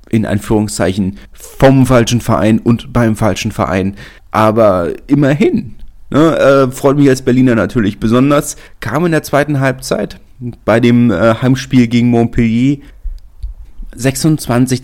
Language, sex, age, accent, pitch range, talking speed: German, male, 30-49, German, 100-125 Hz, 120 wpm